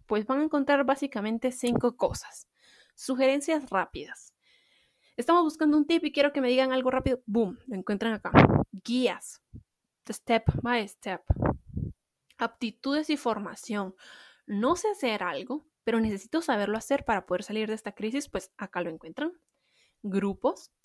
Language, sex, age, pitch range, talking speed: Spanish, female, 20-39, 205-265 Hz, 145 wpm